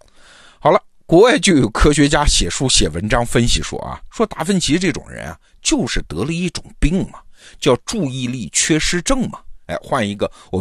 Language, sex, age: Chinese, male, 50-69